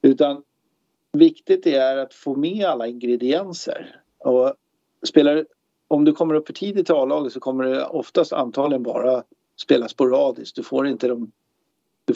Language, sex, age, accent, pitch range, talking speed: Swedish, male, 50-69, native, 120-140 Hz, 160 wpm